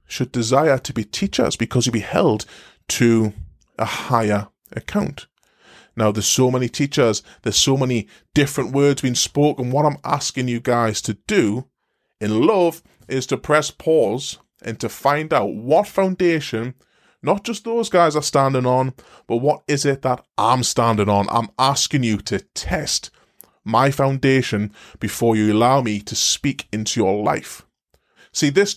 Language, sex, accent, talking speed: English, male, British, 160 wpm